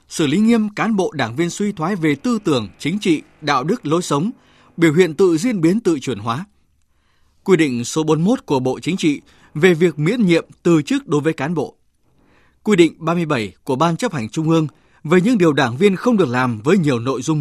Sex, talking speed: male, 225 wpm